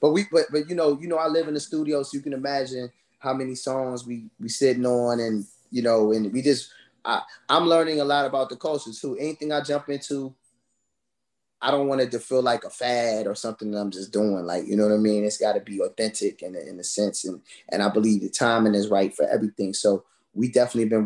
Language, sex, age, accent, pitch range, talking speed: English, male, 20-39, American, 105-125 Hz, 250 wpm